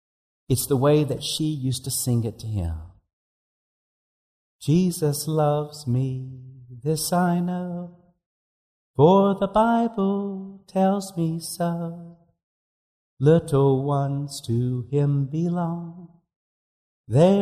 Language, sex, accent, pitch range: English, male, American, 105-165 Hz